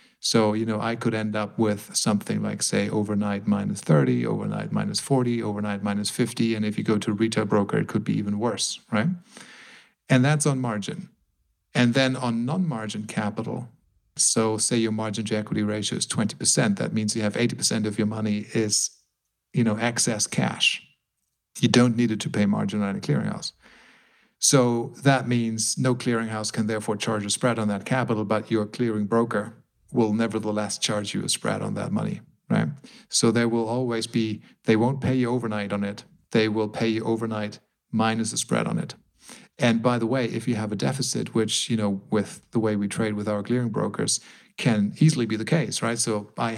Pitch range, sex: 105-120 Hz, male